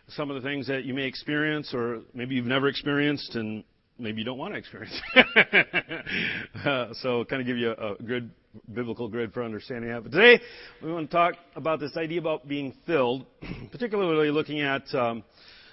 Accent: American